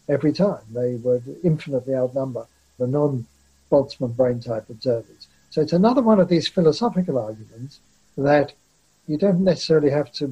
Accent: British